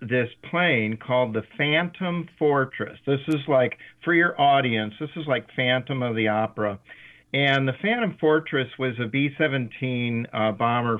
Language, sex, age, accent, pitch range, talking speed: English, male, 50-69, American, 115-140 Hz, 145 wpm